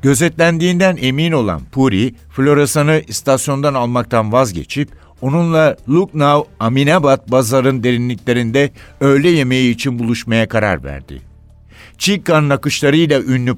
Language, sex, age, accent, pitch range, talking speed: Turkish, male, 60-79, native, 115-145 Hz, 95 wpm